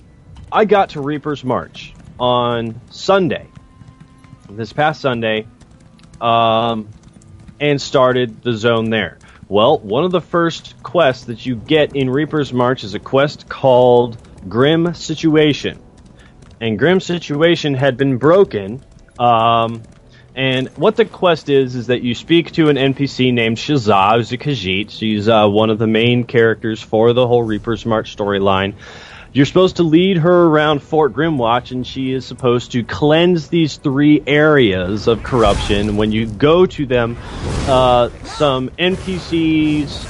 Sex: male